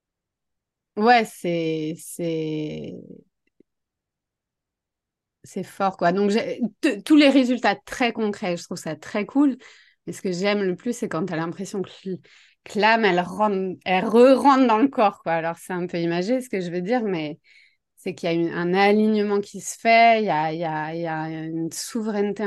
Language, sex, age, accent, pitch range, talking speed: French, female, 30-49, French, 165-205 Hz, 190 wpm